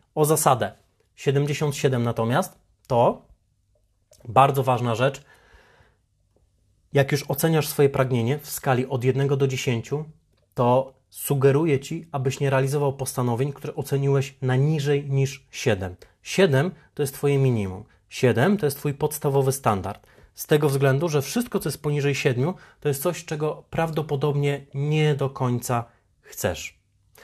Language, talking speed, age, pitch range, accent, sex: Polish, 135 wpm, 30-49, 105-145 Hz, native, male